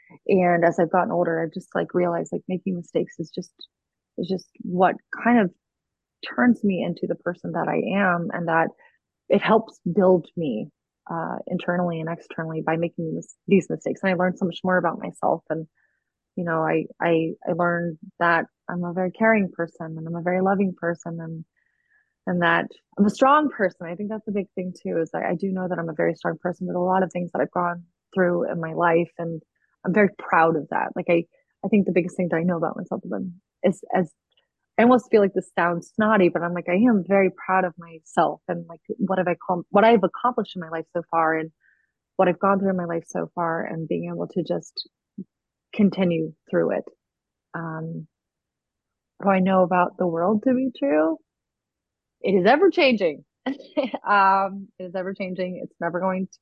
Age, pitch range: 20-39, 170-195 Hz